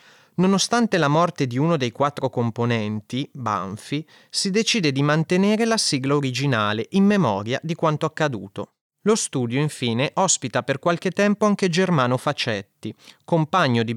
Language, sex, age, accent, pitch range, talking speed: Italian, male, 30-49, native, 120-175 Hz, 140 wpm